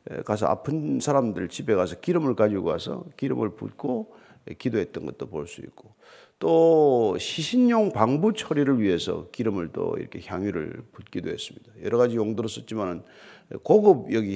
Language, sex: Korean, male